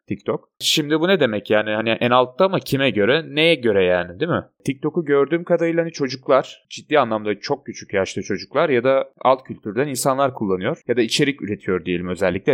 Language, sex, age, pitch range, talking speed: Turkish, male, 30-49, 115-140 Hz, 190 wpm